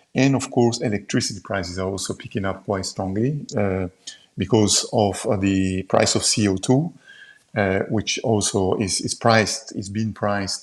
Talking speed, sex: 160 wpm, male